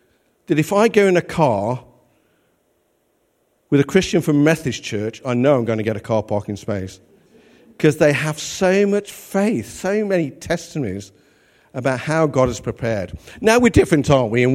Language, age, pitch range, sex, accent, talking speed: English, 50-69, 115-160 Hz, male, British, 175 wpm